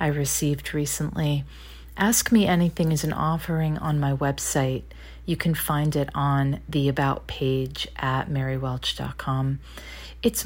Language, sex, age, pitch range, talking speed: English, female, 40-59, 130-160 Hz, 130 wpm